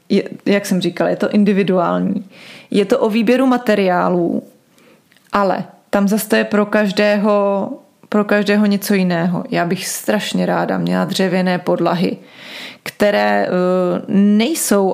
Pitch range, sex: 180-210 Hz, female